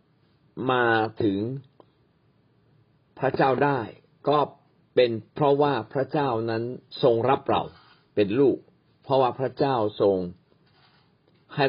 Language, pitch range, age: Thai, 115-150 Hz, 60-79